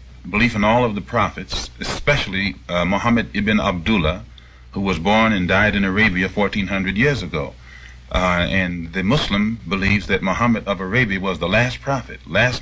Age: 40-59